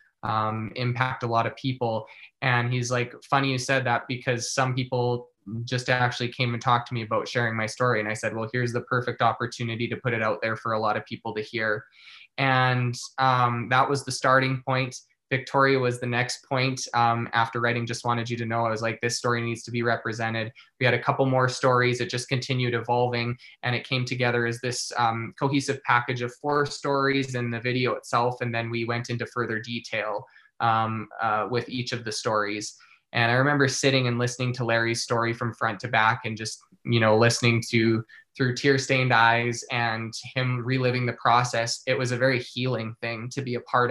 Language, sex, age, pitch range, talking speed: English, male, 20-39, 115-130 Hz, 210 wpm